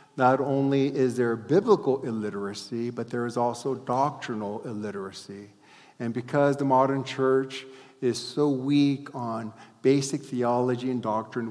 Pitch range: 120-145 Hz